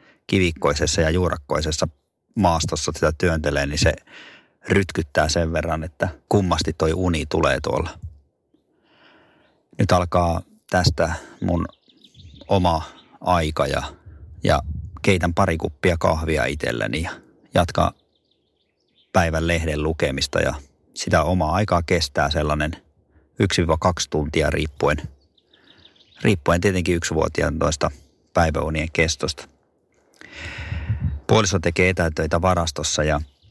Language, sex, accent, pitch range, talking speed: Finnish, male, native, 75-90 Hz, 100 wpm